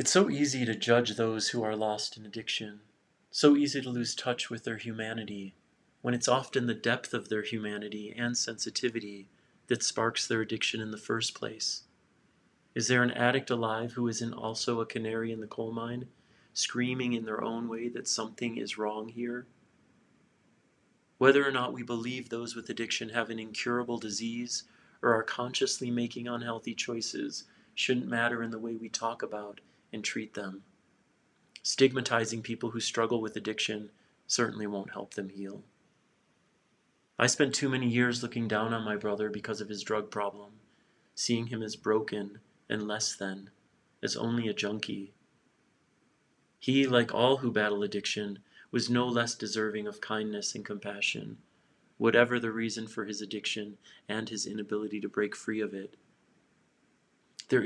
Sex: male